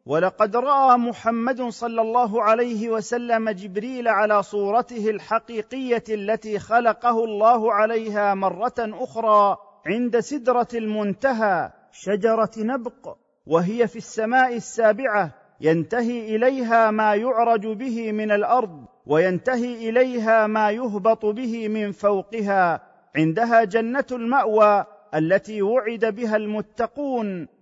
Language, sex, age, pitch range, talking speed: Arabic, male, 40-59, 195-235 Hz, 100 wpm